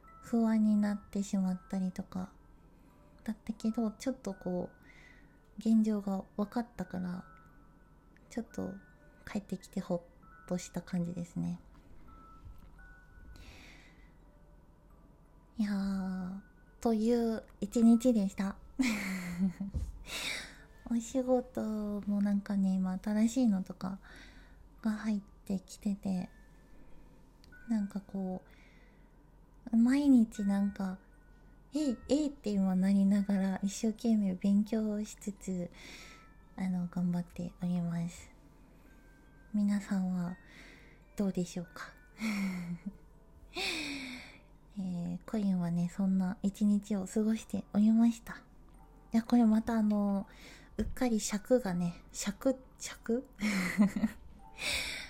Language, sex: Japanese, female